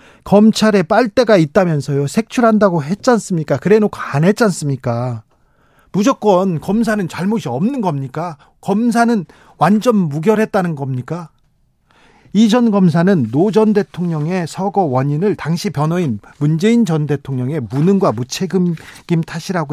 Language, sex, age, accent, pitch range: Korean, male, 40-59, native, 150-210 Hz